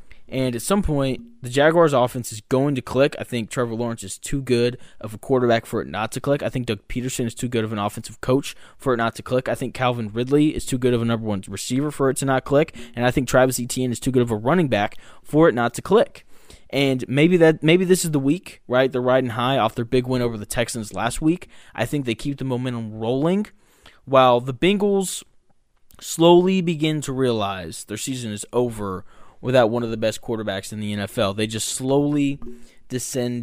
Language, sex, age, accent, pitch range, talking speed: English, male, 20-39, American, 110-135 Hz, 230 wpm